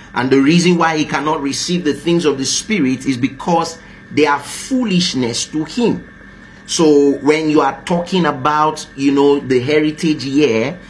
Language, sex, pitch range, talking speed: English, male, 135-170 Hz, 165 wpm